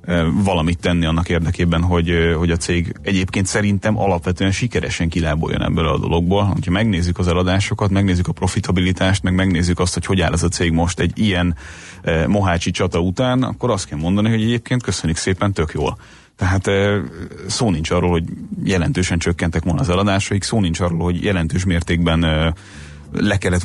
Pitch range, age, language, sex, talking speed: 85-110 Hz, 30-49, Hungarian, male, 175 wpm